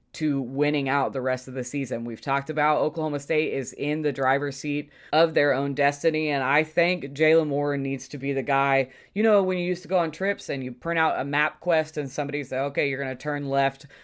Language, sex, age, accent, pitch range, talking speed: English, female, 20-39, American, 135-155 Hz, 245 wpm